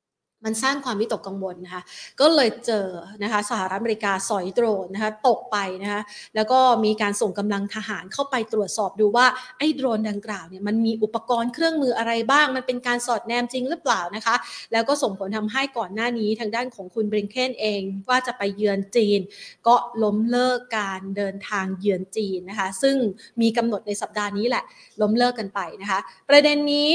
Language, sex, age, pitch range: Thai, female, 20-39, 210-260 Hz